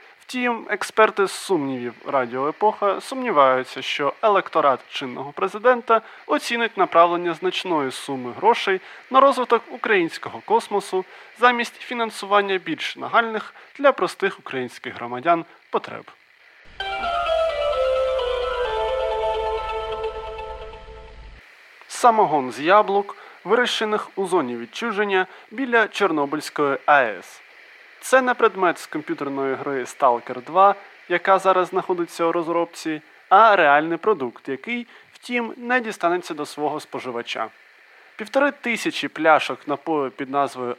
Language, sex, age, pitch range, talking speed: Ukrainian, male, 20-39, 140-230 Hz, 95 wpm